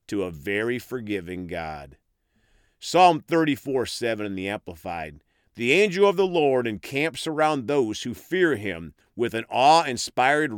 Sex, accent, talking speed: male, American, 140 wpm